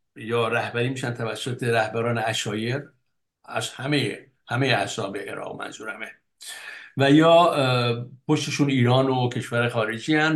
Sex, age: male, 60-79